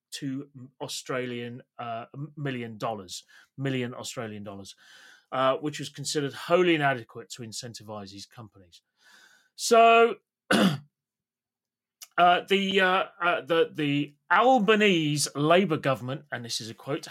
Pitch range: 125-170 Hz